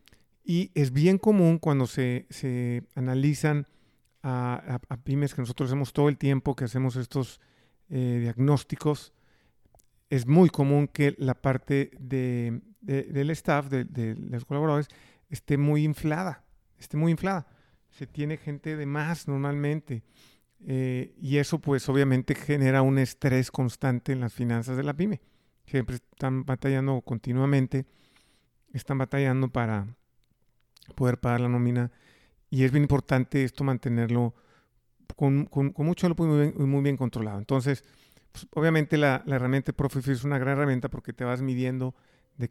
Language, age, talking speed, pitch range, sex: Spanish, 40-59, 150 wpm, 125-145 Hz, male